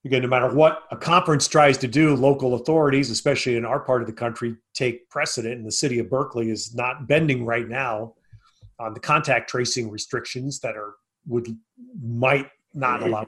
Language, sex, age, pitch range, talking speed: English, male, 40-59, 120-145 Hz, 185 wpm